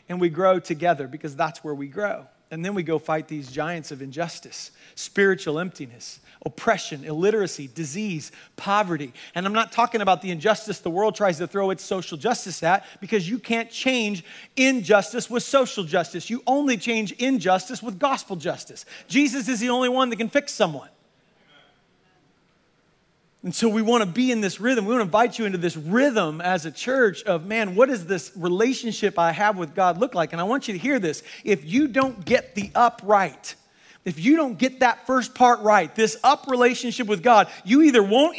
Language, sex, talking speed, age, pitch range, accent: English, male, 195 wpm, 40-59, 175-245 Hz, American